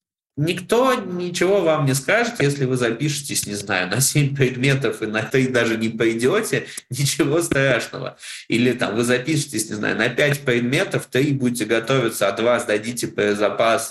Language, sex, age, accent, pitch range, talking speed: Russian, male, 20-39, native, 105-135 Hz, 165 wpm